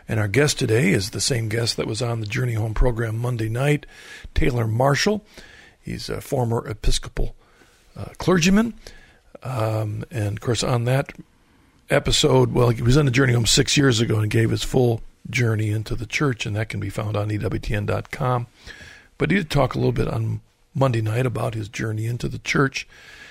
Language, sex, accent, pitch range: English, male, American, 110-135 Hz